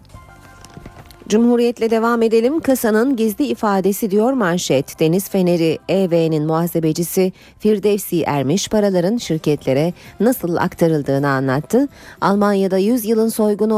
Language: Turkish